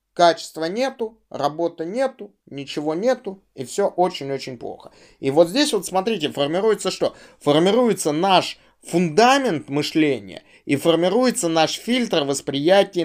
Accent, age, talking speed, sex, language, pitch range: native, 20-39, 120 wpm, male, Russian, 140-190 Hz